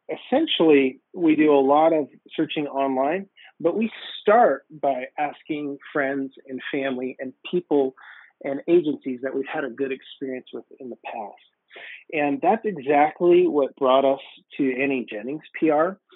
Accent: American